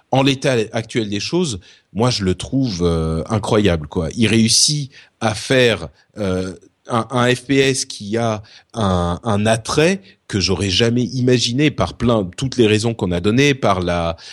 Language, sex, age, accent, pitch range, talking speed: French, male, 30-49, French, 105-135 Hz, 165 wpm